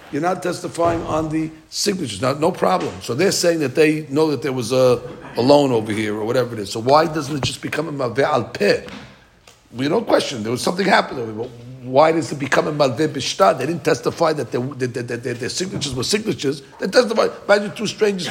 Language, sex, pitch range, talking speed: English, male, 135-175 Hz, 235 wpm